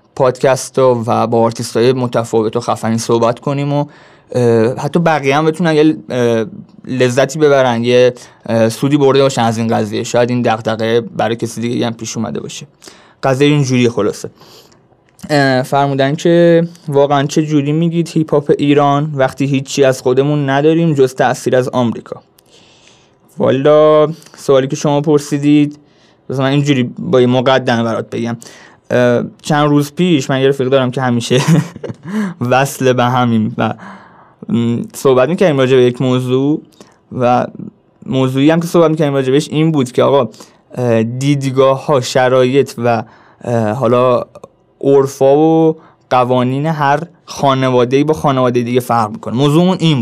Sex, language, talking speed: male, Persian, 135 wpm